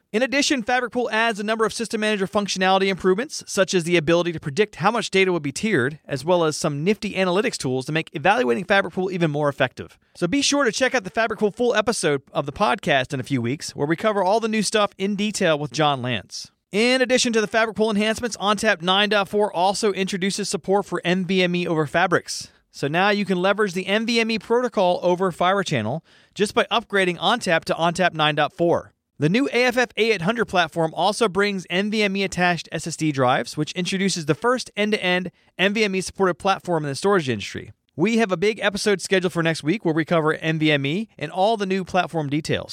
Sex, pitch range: male, 165-210 Hz